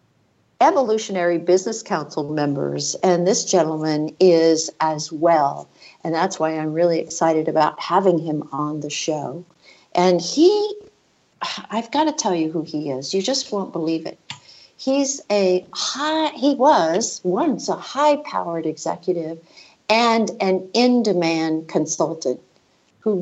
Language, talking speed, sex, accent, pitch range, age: English, 130 wpm, female, American, 160-225 Hz, 60-79